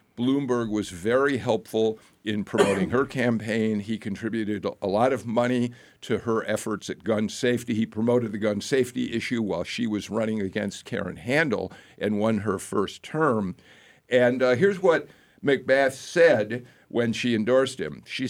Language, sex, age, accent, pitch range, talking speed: English, male, 50-69, American, 100-130 Hz, 160 wpm